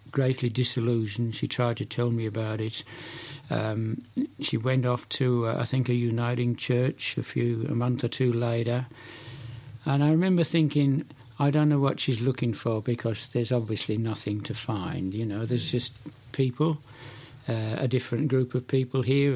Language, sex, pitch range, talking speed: English, male, 115-135 Hz, 175 wpm